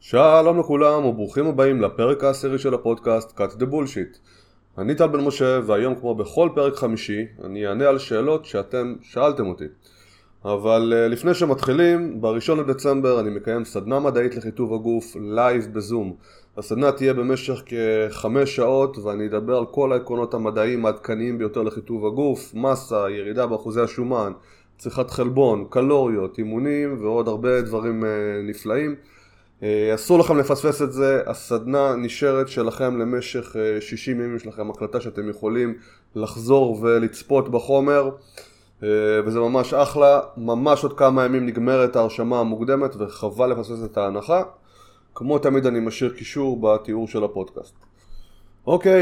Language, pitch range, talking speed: Hebrew, 110-135 Hz, 135 wpm